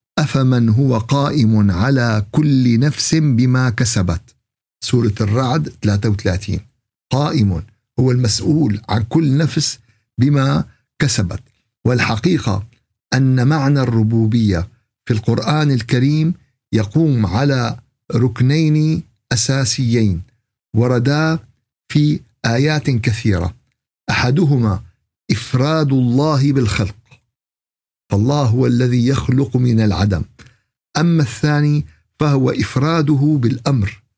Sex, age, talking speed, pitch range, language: male, 50-69, 85 wpm, 110-140 Hz, Arabic